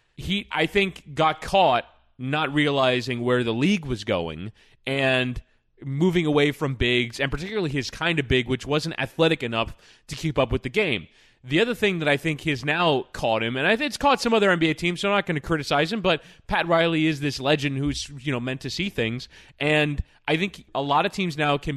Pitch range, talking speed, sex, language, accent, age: 135-180 Hz, 225 wpm, male, English, American, 20-39